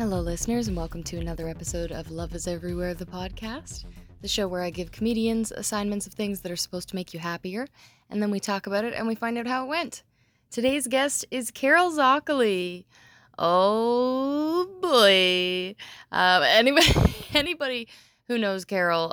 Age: 20-39